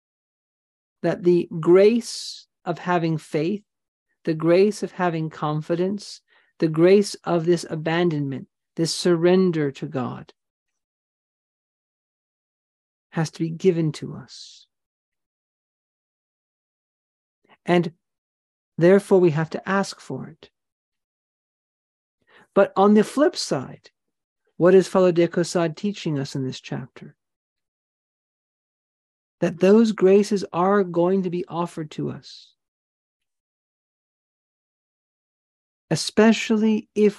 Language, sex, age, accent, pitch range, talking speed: English, male, 50-69, American, 160-195 Hz, 95 wpm